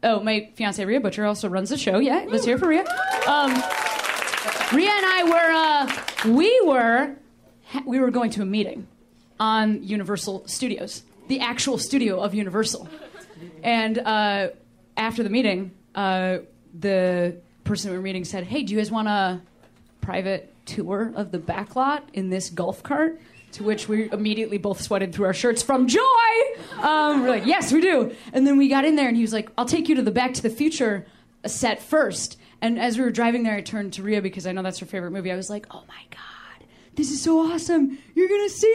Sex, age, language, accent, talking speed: female, 30-49, English, American, 205 wpm